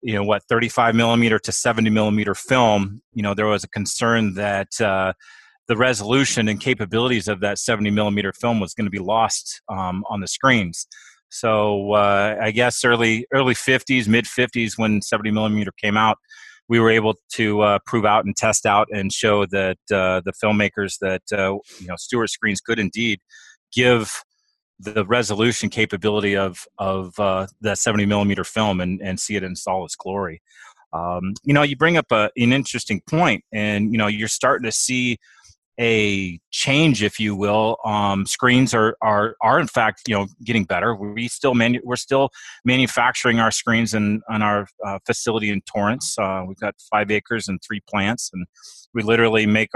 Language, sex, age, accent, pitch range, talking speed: English, male, 30-49, American, 100-115 Hz, 180 wpm